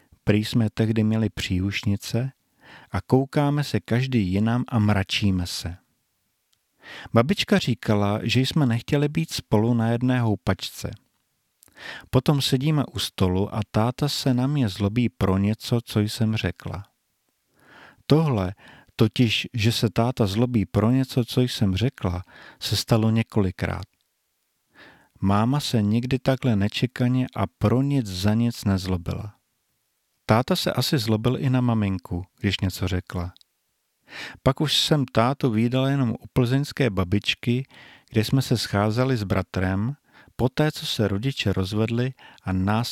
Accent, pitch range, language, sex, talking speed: native, 100-125 Hz, Czech, male, 135 wpm